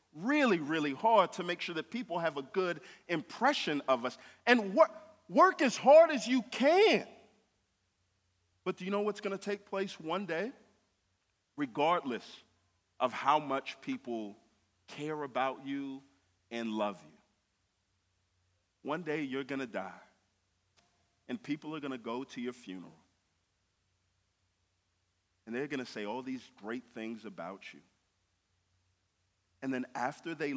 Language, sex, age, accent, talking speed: English, male, 40-59, American, 145 wpm